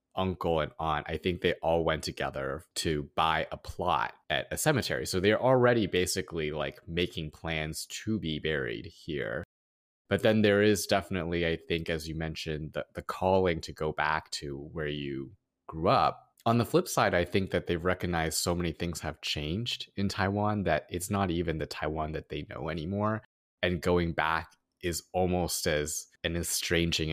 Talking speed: 180 wpm